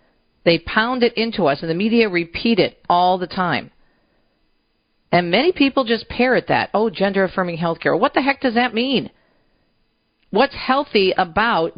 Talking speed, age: 160 wpm, 50-69